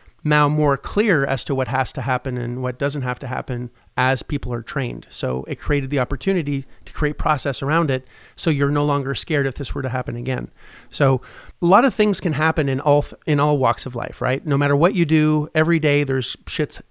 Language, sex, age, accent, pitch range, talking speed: English, male, 30-49, American, 130-160 Hz, 225 wpm